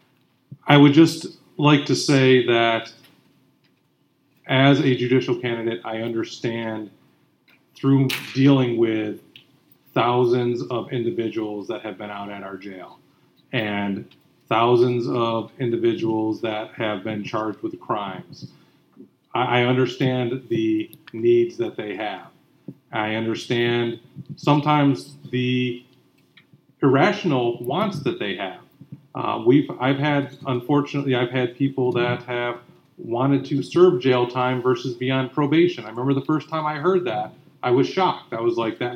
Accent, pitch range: American, 115-145 Hz